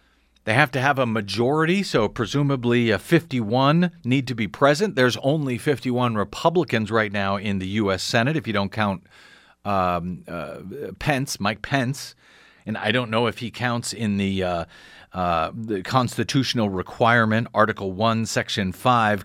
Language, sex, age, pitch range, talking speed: English, male, 40-59, 110-165 Hz, 155 wpm